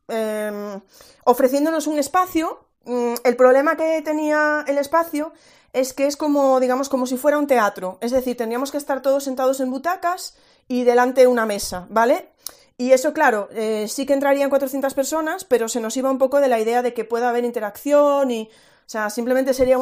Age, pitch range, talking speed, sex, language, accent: 30-49, 235-295 Hz, 190 wpm, female, Spanish, Spanish